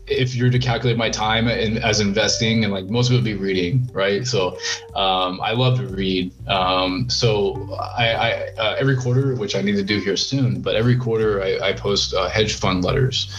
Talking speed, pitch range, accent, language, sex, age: 220 wpm, 90-110 Hz, American, English, male, 20-39